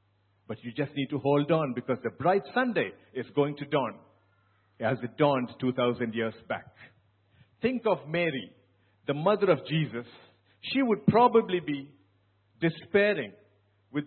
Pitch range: 105-170 Hz